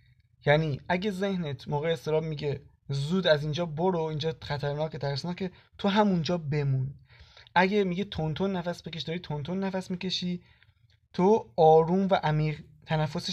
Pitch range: 145-180 Hz